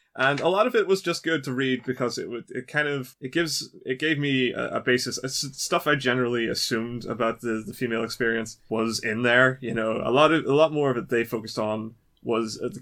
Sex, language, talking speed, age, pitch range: male, English, 250 wpm, 20-39, 110-130 Hz